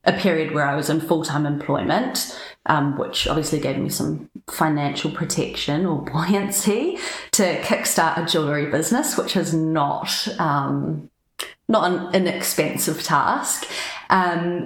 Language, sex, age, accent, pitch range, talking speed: English, female, 30-49, Australian, 145-180 Hz, 130 wpm